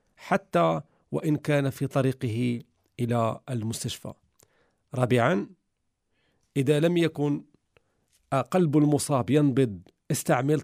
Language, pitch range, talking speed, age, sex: Arabic, 125-150 Hz, 85 wpm, 40-59, male